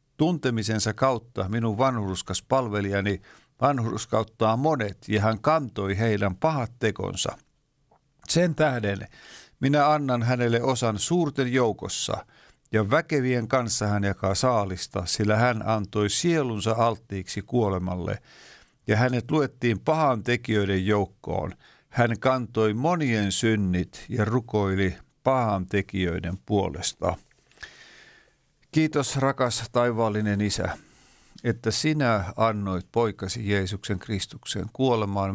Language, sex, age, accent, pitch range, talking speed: Finnish, male, 50-69, native, 100-130 Hz, 95 wpm